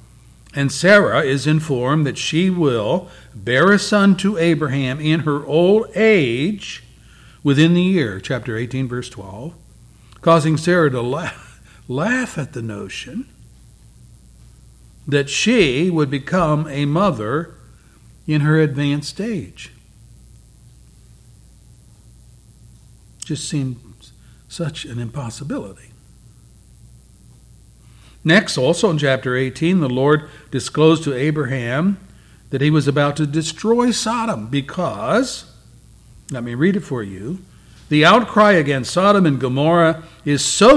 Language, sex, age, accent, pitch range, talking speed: English, male, 60-79, American, 120-165 Hz, 115 wpm